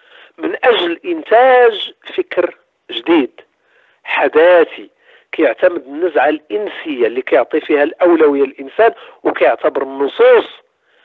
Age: 50-69